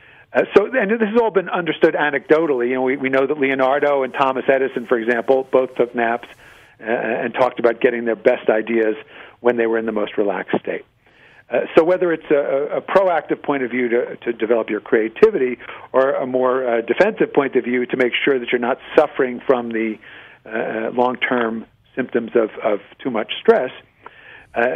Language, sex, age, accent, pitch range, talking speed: English, male, 50-69, American, 120-140 Hz, 195 wpm